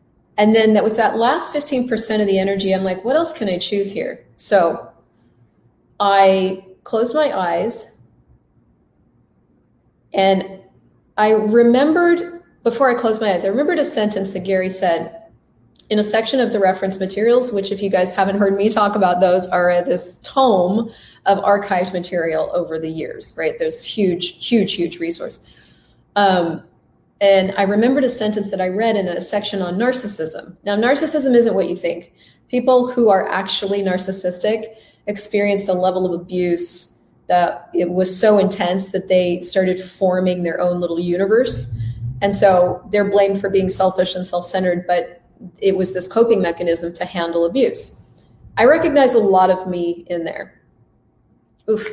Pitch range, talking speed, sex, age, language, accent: 180-220 Hz, 165 wpm, female, 30-49, English, American